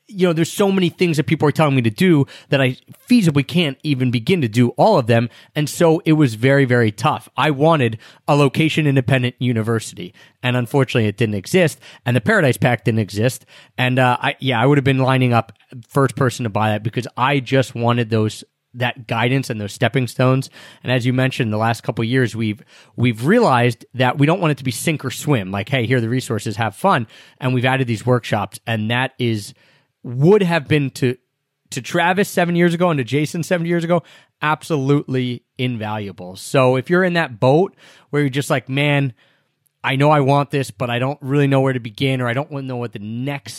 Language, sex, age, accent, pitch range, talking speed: English, male, 30-49, American, 120-150 Hz, 225 wpm